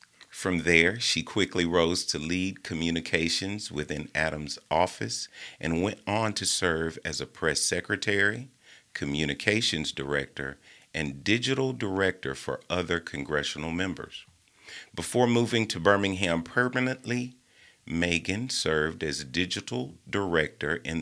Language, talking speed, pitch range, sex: English, 115 wpm, 75-100 Hz, male